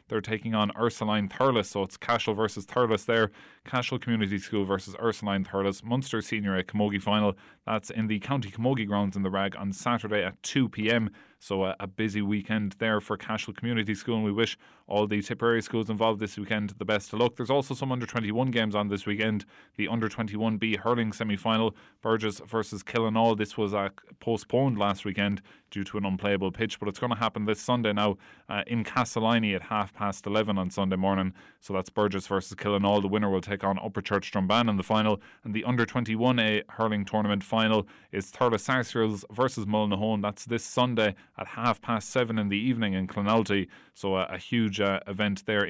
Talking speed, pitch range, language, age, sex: 195 wpm, 100-110 Hz, English, 20-39, male